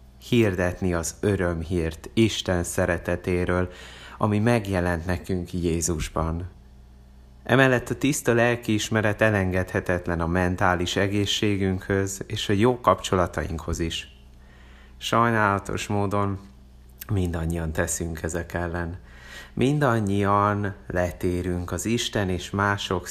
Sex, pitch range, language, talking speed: male, 85-100 Hz, Hungarian, 90 wpm